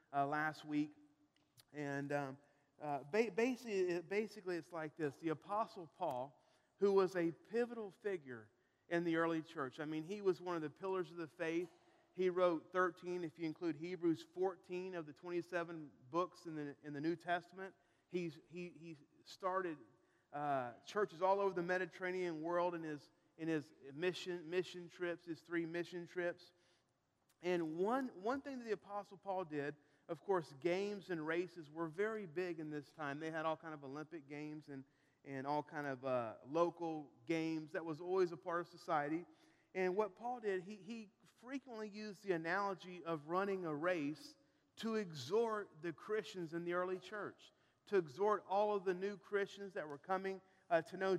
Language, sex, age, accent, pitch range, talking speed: English, male, 40-59, American, 155-195 Hz, 175 wpm